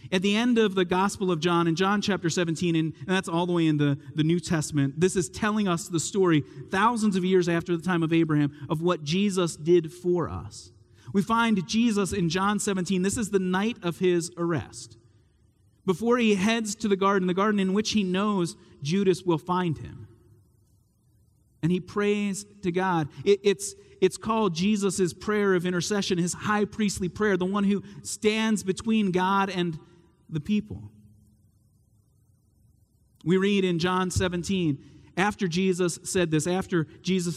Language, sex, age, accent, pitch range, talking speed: English, male, 40-59, American, 125-190 Hz, 175 wpm